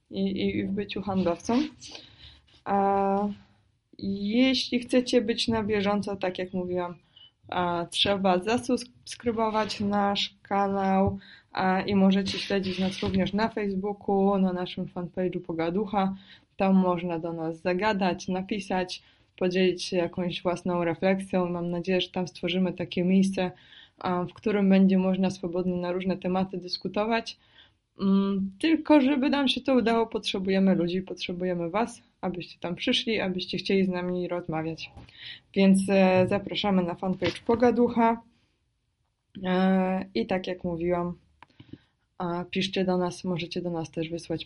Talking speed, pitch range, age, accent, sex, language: 120 wpm, 175-200 Hz, 20-39, native, female, Polish